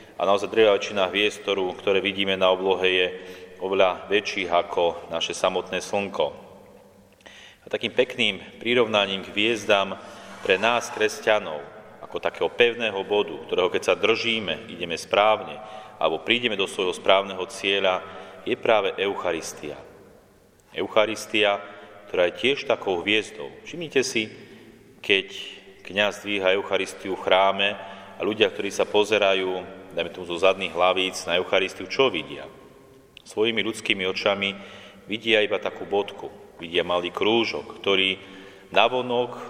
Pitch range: 95-105 Hz